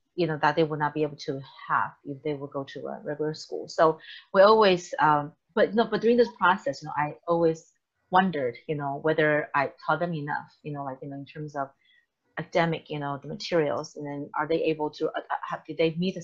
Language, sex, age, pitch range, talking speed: English, female, 30-49, 150-180 Hz, 250 wpm